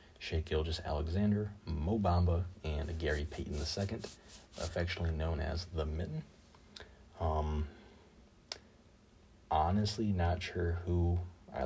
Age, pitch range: 30-49, 80-90 Hz